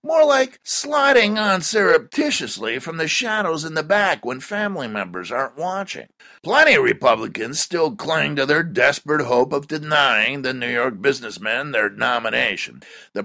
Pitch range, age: 160-225 Hz, 50-69